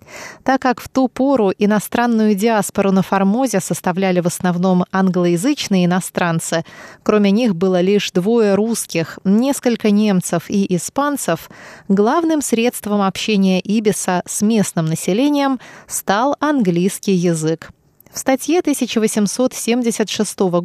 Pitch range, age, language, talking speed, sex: 180-240 Hz, 20-39, Russian, 110 wpm, female